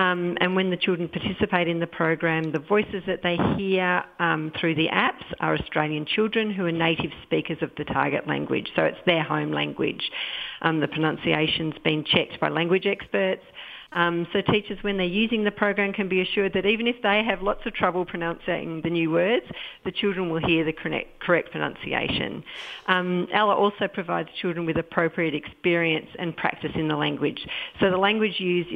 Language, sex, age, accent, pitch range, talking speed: English, female, 50-69, Australian, 160-185 Hz, 185 wpm